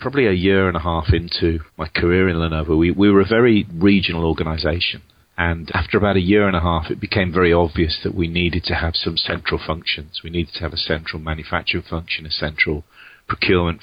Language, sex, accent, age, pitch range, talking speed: English, male, British, 40-59, 80-95 Hz, 215 wpm